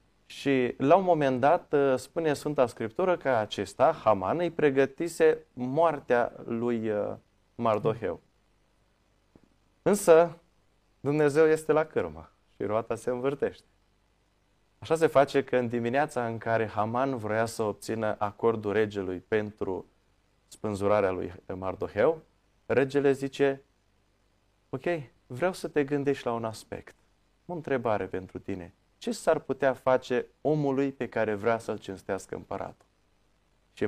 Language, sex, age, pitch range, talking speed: Romanian, male, 20-39, 105-145 Hz, 120 wpm